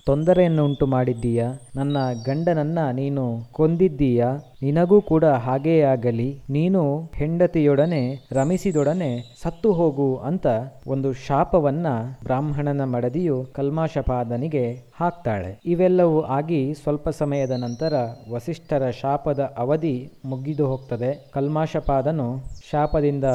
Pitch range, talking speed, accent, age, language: 130-155 Hz, 90 wpm, native, 20-39, Kannada